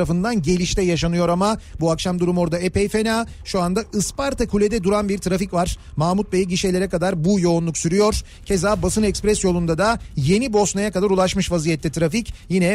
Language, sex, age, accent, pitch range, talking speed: Turkish, male, 40-59, native, 175-210 Hz, 170 wpm